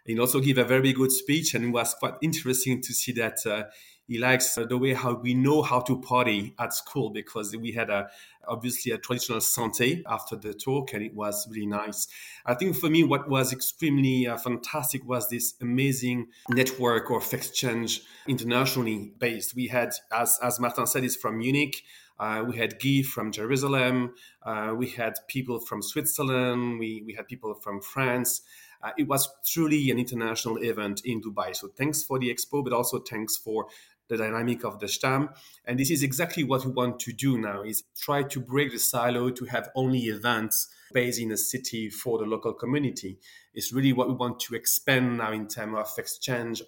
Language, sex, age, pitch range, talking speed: English, male, 40-59, 115-130 Hz, 195 wpm